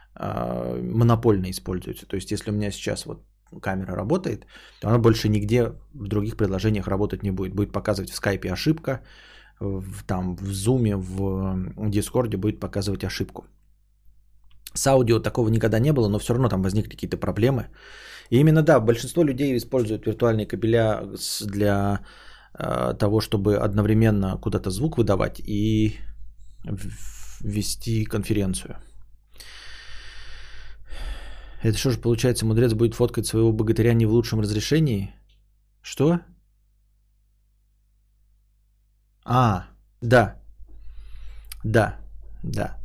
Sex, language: male, Russian